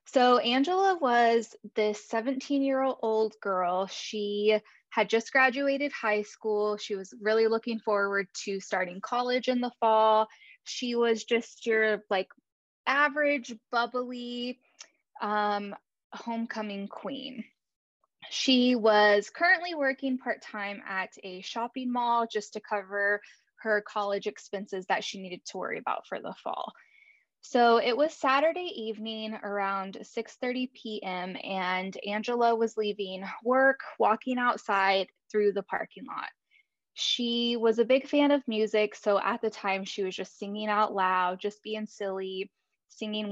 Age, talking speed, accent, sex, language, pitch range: 10-29, 135 wpm, American, female, English, 200-245 Hz